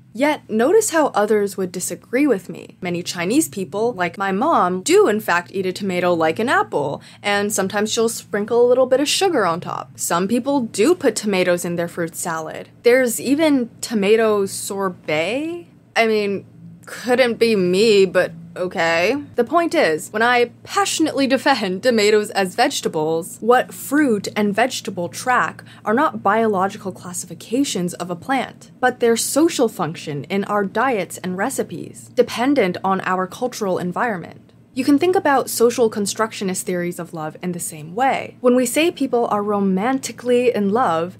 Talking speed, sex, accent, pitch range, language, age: 160 wpm, female, American, 180-250 Hz, English, 20-39